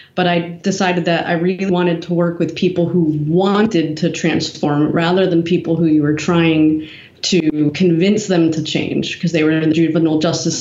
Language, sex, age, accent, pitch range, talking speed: English, female, 30-49, American, 160-185 Hz, 190 wpm